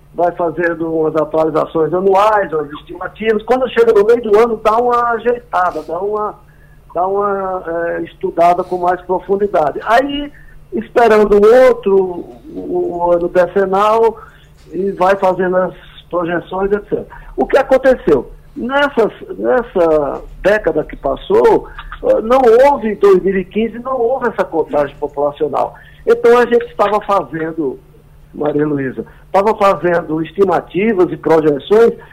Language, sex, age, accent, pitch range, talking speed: Portuguese, male, 50-69, Brazilian, 175-235 Hz, 120 wpm